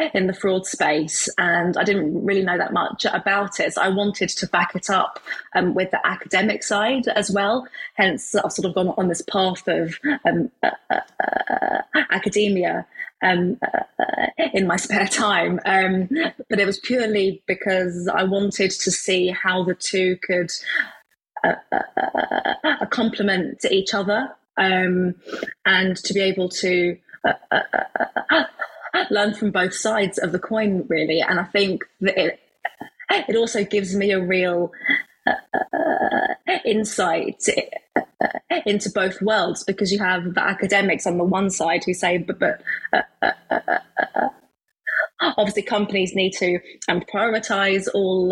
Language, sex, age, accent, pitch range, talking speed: English, female, 20-39, British, 185-215 Hz, 125 wpm